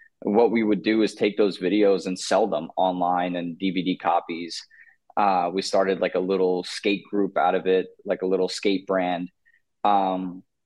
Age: 20-39